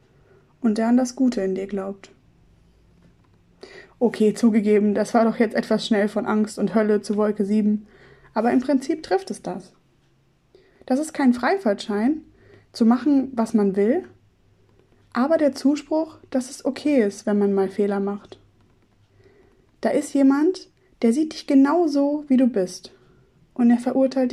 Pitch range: 205-265 Hz